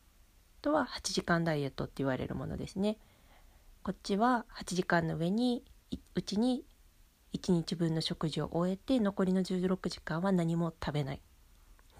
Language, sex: Japanese, female